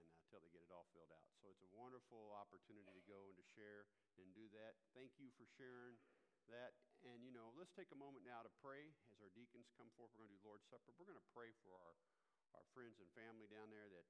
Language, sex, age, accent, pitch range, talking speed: English, male, 50-69, American, 95-115 Hz, 245 wpm